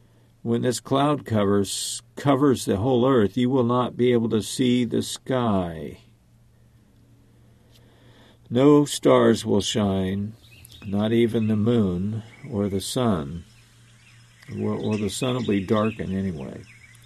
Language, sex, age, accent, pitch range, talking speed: English, male, 50-69, American, 105-120 Hz, 125 wpm